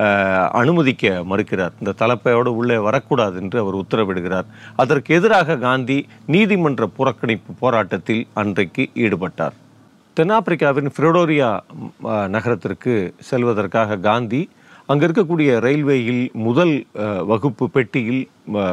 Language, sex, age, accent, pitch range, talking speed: Tamil, male, 40-59, native, 105-140 Hz, 90 wpm